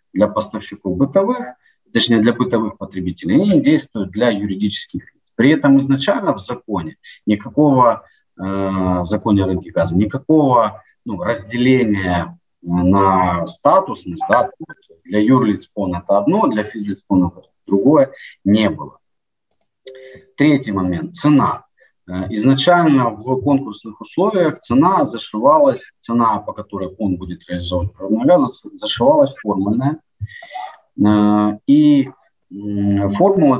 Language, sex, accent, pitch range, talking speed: Ukrainian, male, native, 95-135 Hz, 100 wpm